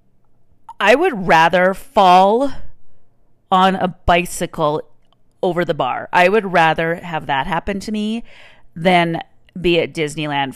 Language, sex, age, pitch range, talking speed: English, female, 30-49, 150-190 Hz, 125 wpm